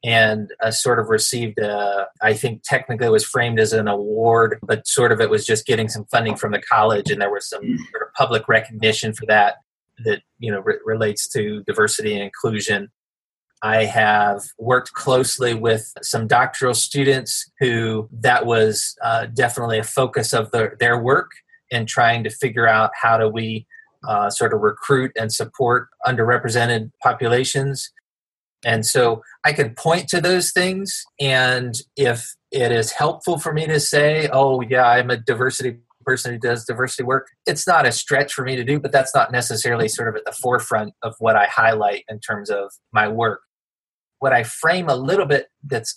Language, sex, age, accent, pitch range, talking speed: English, male, 30-49, American, 110-140 Hz, 180 wpm